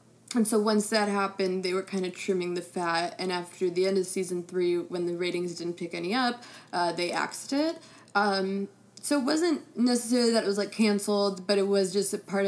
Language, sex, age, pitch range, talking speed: English, female, 20-39, 180-210 Hz, 220 wpm